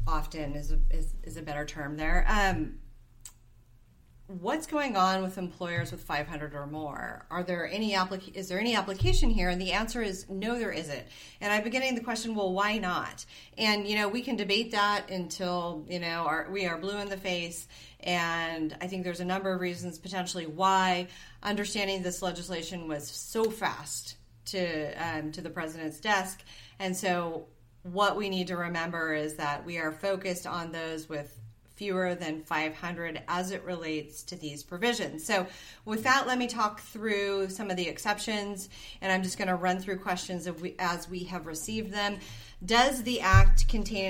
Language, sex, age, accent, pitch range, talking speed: English, female, 30-49, American, 155-200 Hz, 185 wpm